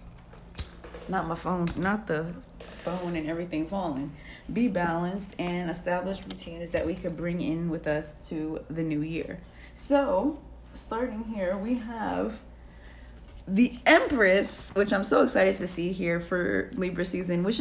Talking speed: 145 wpm